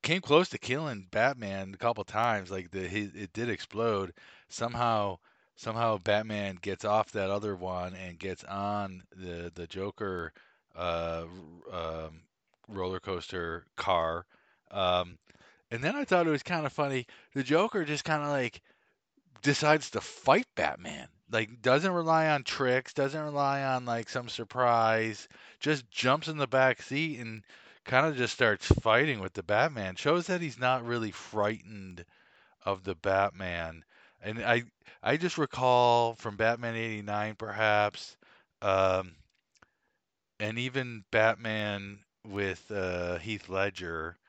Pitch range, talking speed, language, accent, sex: 95-130 Hz, 145 wpm, English, American, male